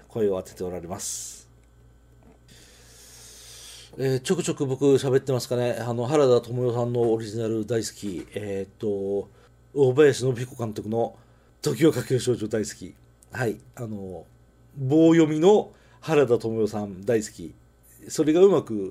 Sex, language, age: male, Japanese, 40-59